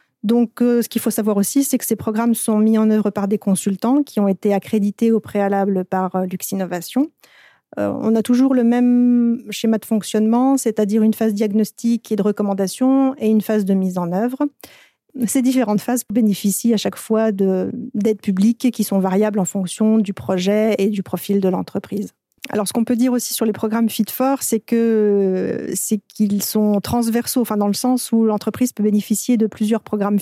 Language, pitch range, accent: French, 200-230 Hz, French